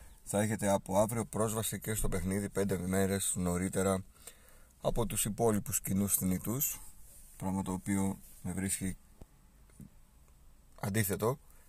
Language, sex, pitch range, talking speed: Greek, male, 85-115 Hz, 115 wpm